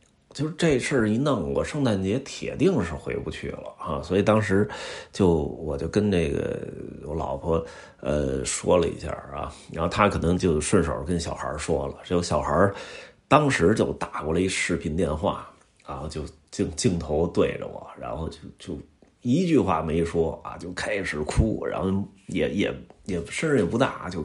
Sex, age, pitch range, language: male, 30-49, 80-105 Hz, Chinese